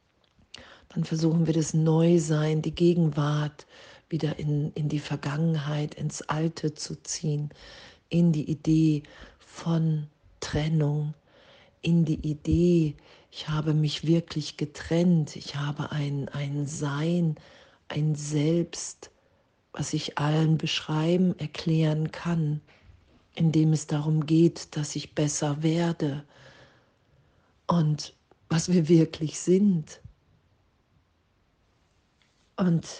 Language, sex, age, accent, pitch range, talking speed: German, female, 40-59, German, 150-165 Hz, 100 wpm